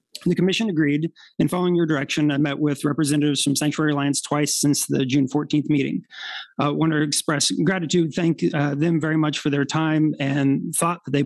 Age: 30-49